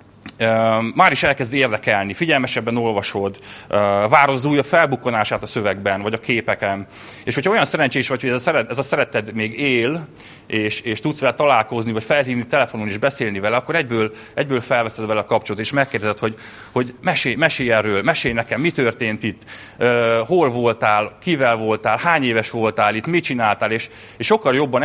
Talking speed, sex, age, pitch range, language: 180 wpm, male, 30-49, 100-125 Hz, Hungarian